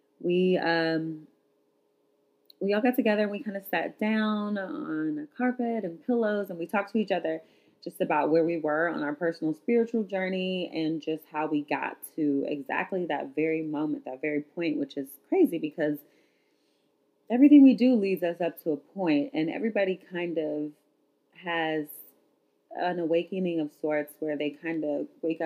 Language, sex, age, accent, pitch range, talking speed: English, female, 30-49, American, 155-215 Hz, 170 wpm